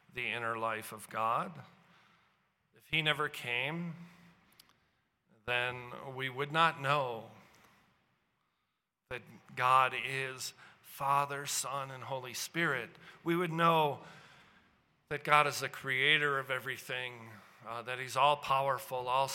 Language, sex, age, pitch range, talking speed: English, male, 50-69, 130-170 Hz, 120 wpm